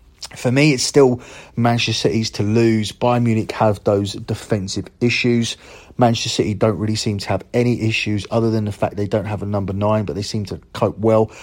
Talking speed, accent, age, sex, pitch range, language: 205 wpm, British, 30-49, male, 105-120 Hz, English